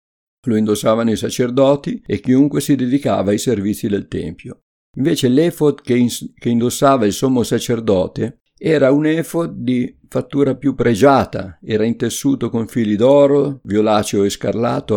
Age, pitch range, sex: 50-69, 105-130 Hz, male